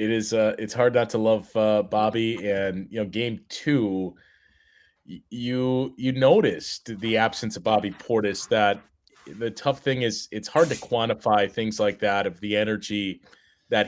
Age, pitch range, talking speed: 30-49, 100-115 Hz, 170 wpm